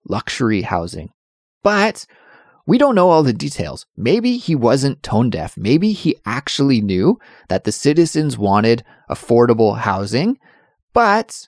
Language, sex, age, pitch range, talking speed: English, male, 30-49, 100-145 Hz, 130 wpm